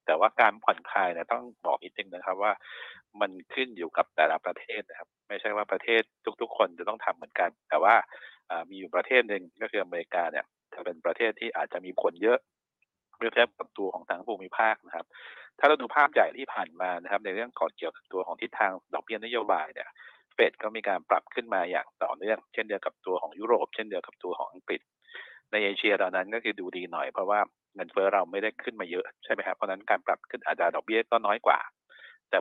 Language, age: Thai, 60-79